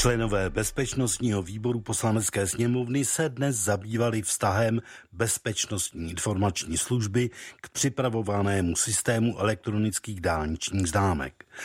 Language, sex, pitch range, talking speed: Czech, male, 95-120 Hz, 95 wpm